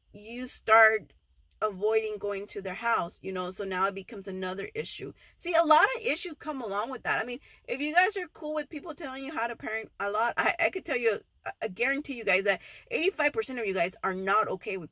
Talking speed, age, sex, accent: 235 wpm, 30-49, female, American